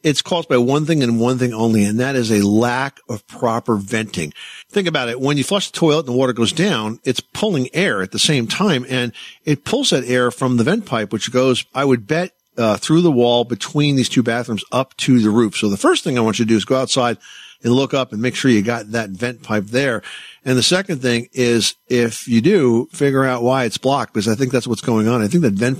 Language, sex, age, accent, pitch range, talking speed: English, male, 50-69, American, 115-135 Hz, 260 wpm